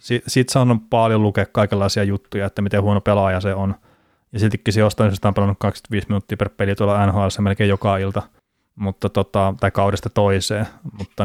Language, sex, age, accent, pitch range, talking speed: Finnish, male, 30-49, native, 100-115 Hz, 175 wpm